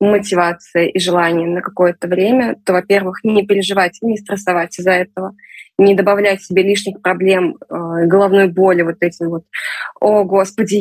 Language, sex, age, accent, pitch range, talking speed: Russian, female, 20-39, native, 185-230 Hz, 145 wpm